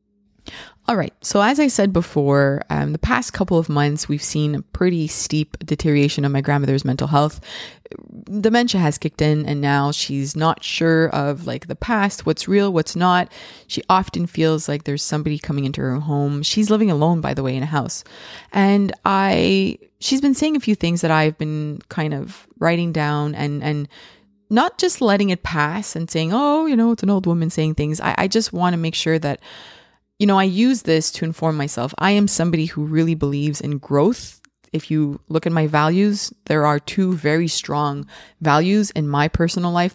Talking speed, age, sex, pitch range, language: 200 wpm, 20-39, female, 145-185 Hz, English